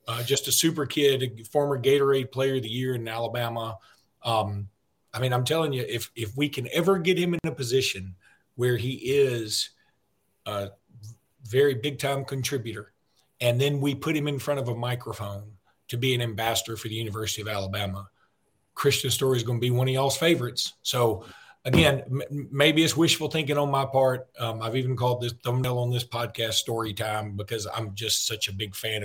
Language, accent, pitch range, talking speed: English, American, 115-135 Hz, 195 wpm